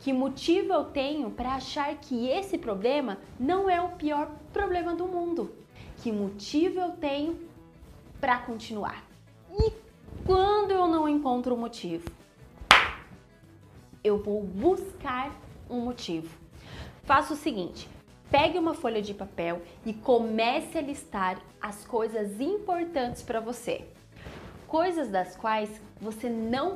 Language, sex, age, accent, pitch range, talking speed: Portuguese, female, 20-39, Brazilian, 225-335 Hz, 125 wpm